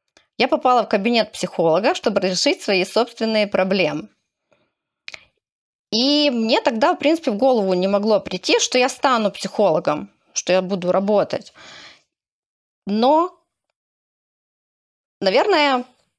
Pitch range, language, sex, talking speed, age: 205-270 Hz, Russian, female, 110 wpm, 20-39